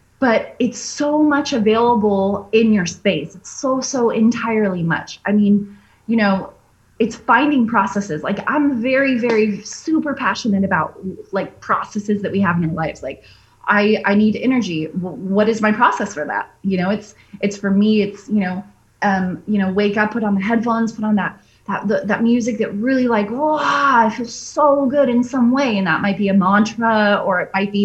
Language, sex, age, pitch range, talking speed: English, female, 20-39, 195-235 Hz, 195 wpm